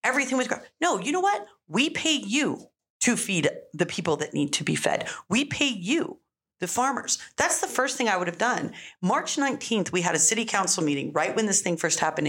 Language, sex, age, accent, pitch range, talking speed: English, female, 40-59, American, 160-240 Hz, 225 wpm